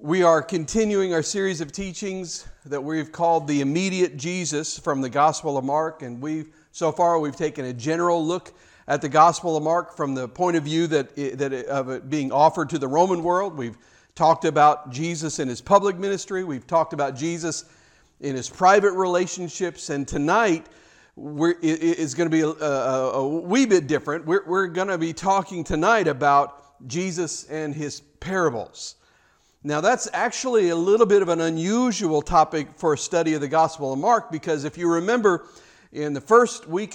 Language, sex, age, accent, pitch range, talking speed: English, male, 50-69, American, 150-185 Hz, 185 wpm